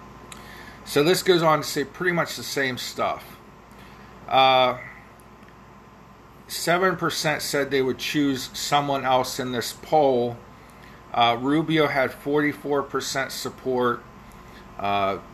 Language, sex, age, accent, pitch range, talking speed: English, male, 40-59, American, 120-155 Hz, 105 wpm